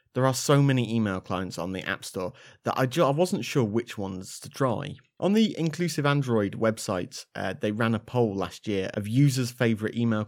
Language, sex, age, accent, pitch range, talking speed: English, male, 30-49, British, 100-130 Hz, 210 wpm